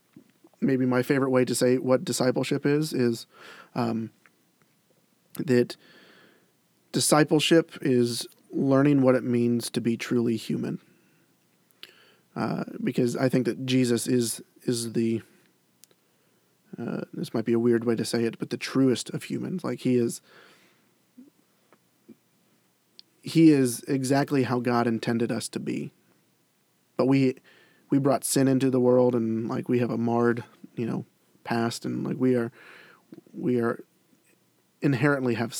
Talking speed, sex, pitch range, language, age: 140 wpm, male, 120-150 Hz, English, 30-49